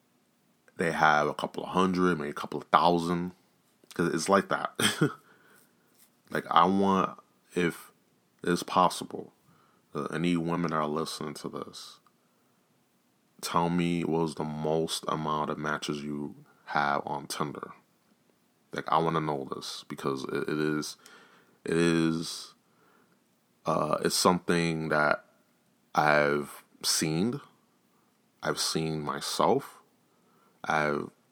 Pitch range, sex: 75-85 Hz, male